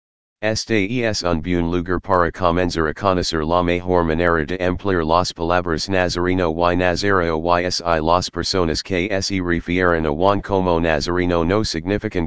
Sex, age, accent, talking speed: male, 40-59, American, 150 wpm